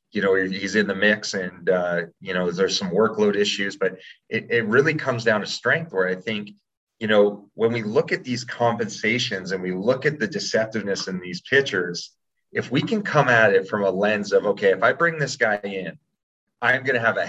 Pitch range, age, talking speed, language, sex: 100-120 Hz, 30-49, 220 wpm, English, male